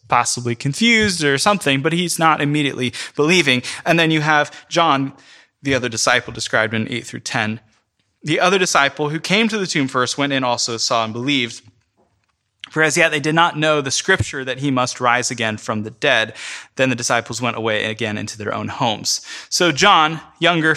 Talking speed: 195 wpm